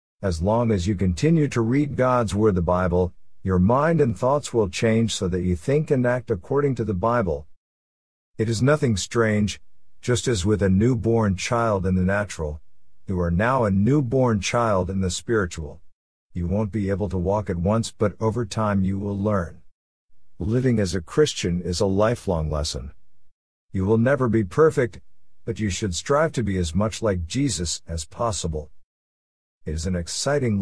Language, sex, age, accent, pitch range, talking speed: English, male, 50-69, American, 90-115 Hz, 180 wpm